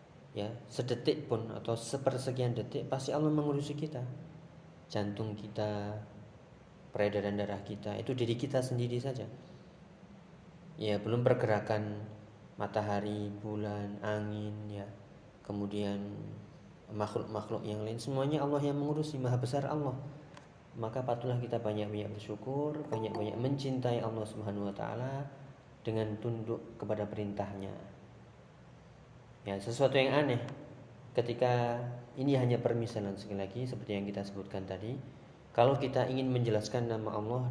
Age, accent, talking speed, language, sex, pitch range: 20-39, native, 120 wpm, Indonesian, male, 105-130 Hz